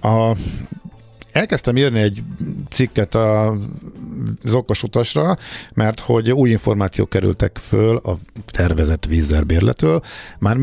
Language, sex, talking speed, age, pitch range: Hungarian, male, 95 wpm, 50-69, 90-120 Hz